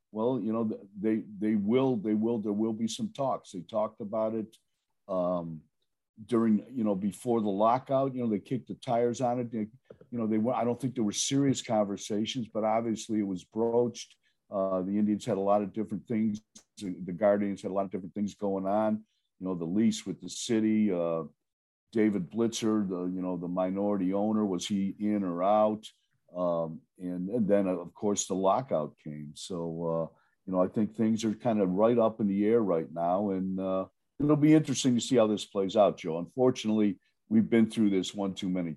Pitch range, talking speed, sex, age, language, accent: 95-115 Hz, 205 wpm, male, 50-69, English, American